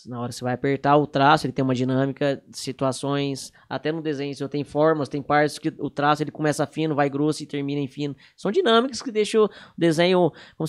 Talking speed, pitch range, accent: 230 wpm, 140-180 Hz, Brazilian